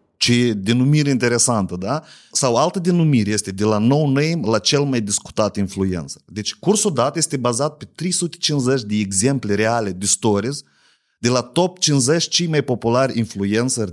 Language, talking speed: Romanian, 160 wpm